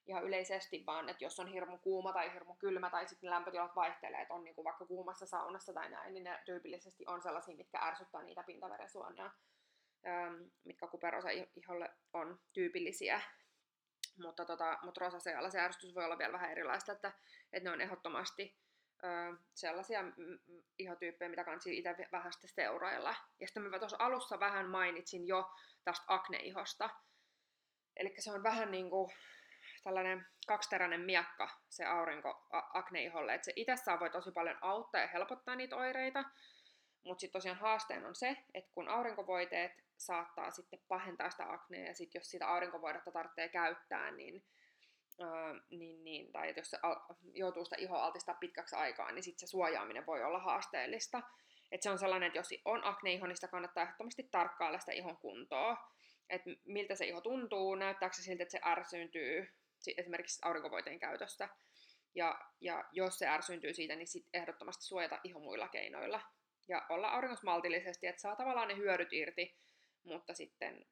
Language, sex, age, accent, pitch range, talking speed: Finnish, female, 20-39, native, 175-195 Hz, 160 wpm